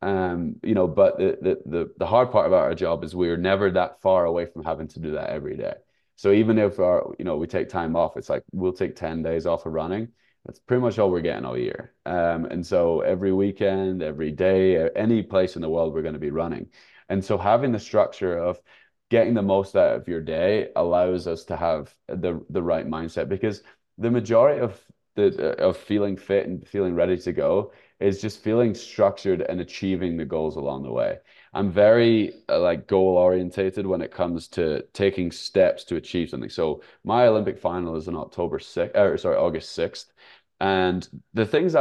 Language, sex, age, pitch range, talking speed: English, male, 20-39, 85-105 Hz, 205 wpm